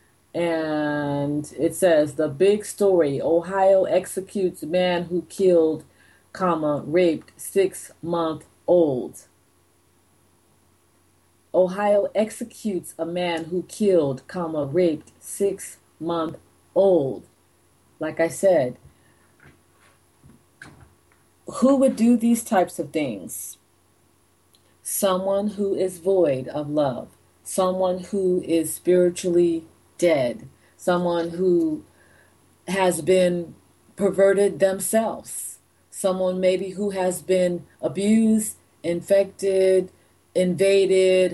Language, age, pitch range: English, 40-59, 145-185 Hz